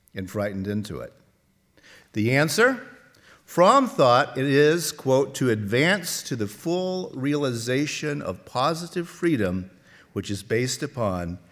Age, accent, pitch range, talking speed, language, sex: 50-69, American, 110-165 Hz, 125 wpm, English, male